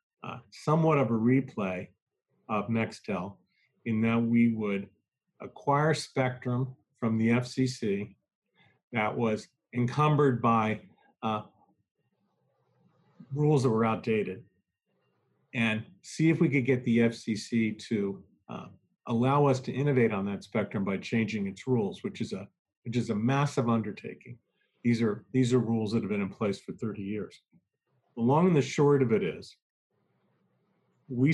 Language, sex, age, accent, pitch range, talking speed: English, male, 40-59, American, 110-135 Hz, 145 wpm